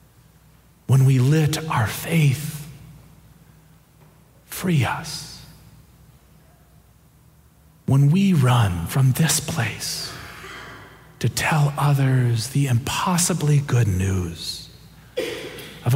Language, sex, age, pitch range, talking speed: English, male, 40-59, 125-155 Hz, 80 wpm